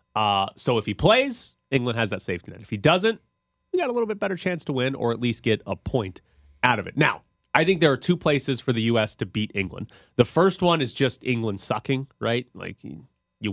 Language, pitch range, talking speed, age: English, 110-140 Hz, 240 wpm, 30-49